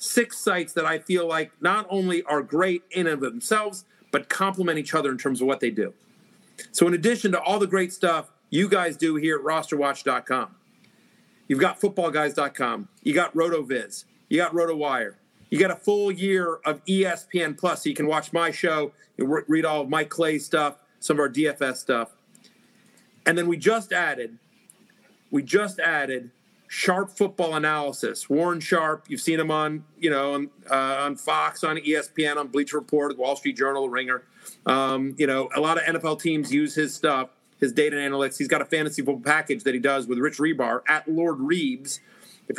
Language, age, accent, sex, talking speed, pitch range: English, 40-59, American, male, 190 wpm, 140-175 Hz